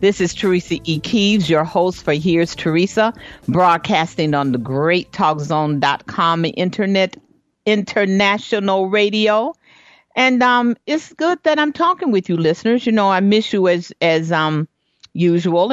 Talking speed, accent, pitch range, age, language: 135 wpm, American, 160-215 Hz, 50-69, English